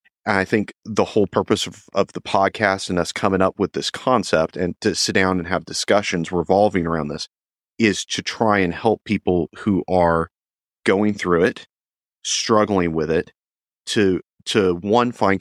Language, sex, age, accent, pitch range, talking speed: English, male, 30-49, American, 90-105 Hz, 170 wpm